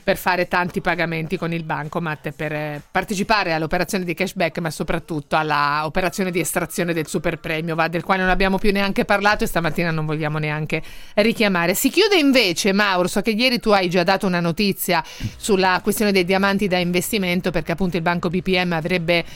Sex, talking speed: female, 185 wpm